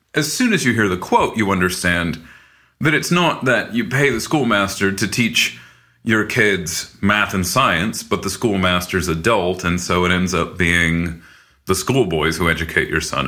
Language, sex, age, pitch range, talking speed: English, male, 40-59, 80-120 Hz, 180 wpm